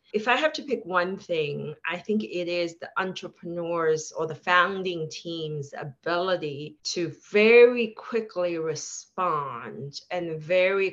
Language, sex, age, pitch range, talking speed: English, female, 30-49, 155-210 Hz, 130 wpm